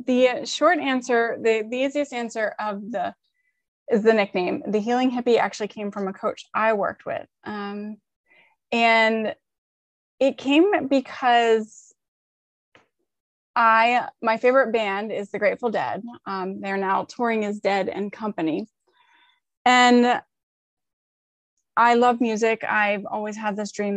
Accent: American